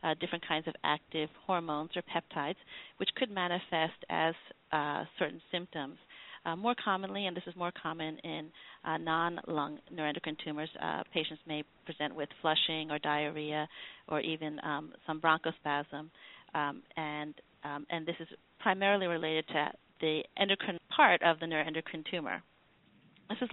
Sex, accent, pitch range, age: female, American, 155-175 Hz, 40-59